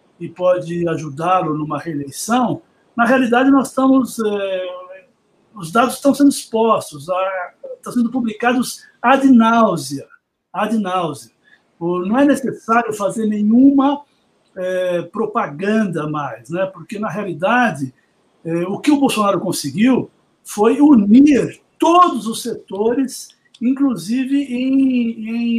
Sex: male